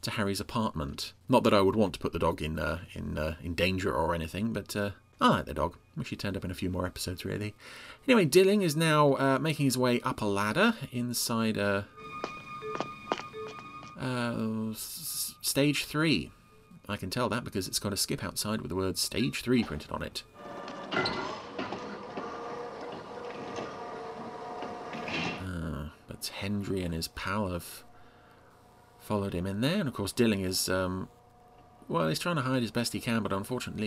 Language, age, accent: English, 30-49, British